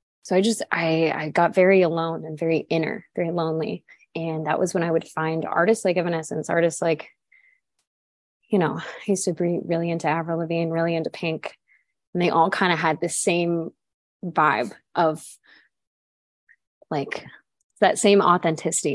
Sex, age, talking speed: female, 20-39, 165 wpm